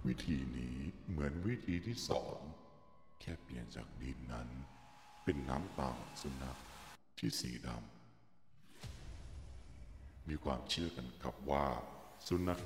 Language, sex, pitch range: Thai, male, 65-85 Hz